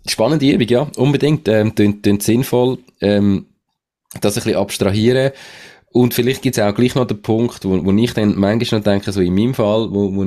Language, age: German, 20-39